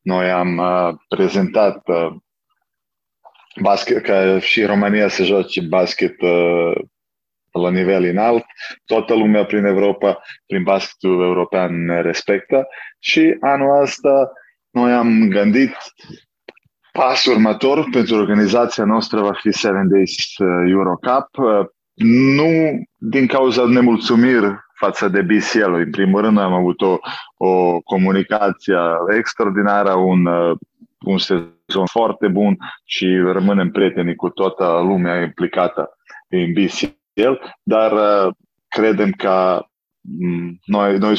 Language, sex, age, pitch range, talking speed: Romanian, male, 20-39, 90-110 Hz, 115 wpm